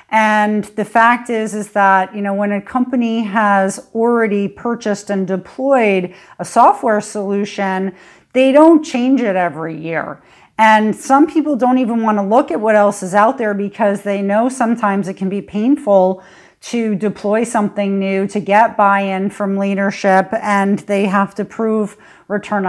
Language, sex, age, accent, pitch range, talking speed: English, female, 40-59, American, 195-230 Hz, 165 wpm